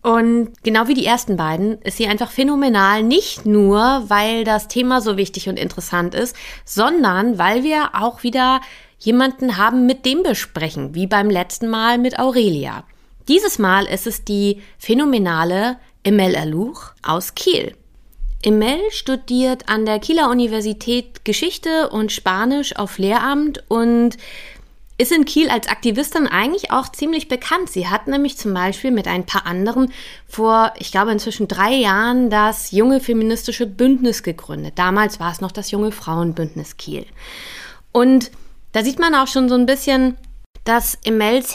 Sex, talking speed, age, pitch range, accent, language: female, 155 wpm, 30-49, 200-255 Hz, German, German